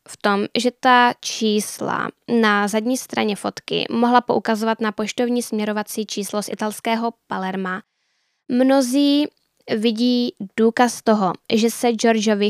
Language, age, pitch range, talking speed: Czech, 10-29, 205-235 Hz, 120 wpm